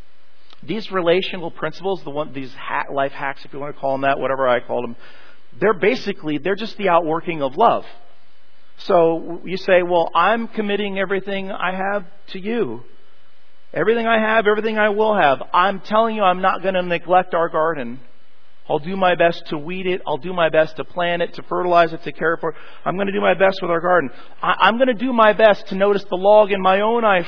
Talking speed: 220 wpm